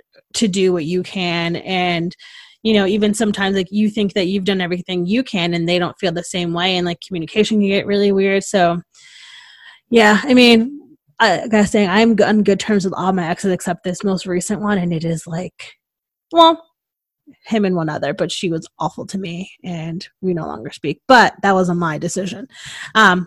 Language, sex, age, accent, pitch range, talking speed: English, female, 20-39, American, 175-215 Hz, 205 wpm